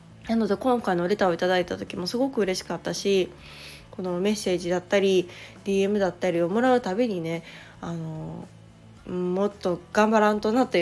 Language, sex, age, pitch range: Japanese, female, 20-39, 185-220 Hz